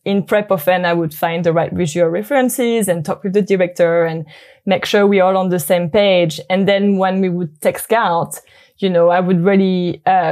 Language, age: English, 20-39